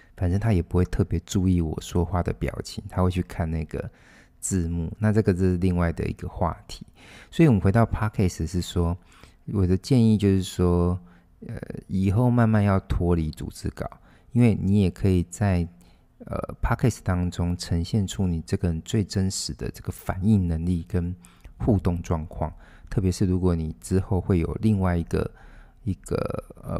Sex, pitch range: male, 85-100 Hz